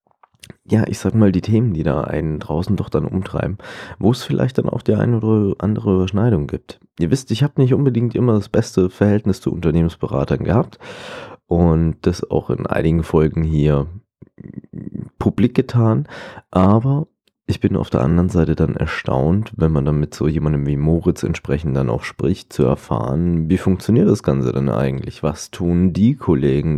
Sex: male